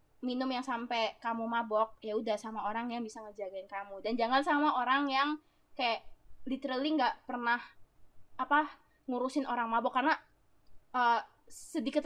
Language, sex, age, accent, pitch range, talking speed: Indonesian, female, 20-39, native, 225-275 Hz, 145 wpm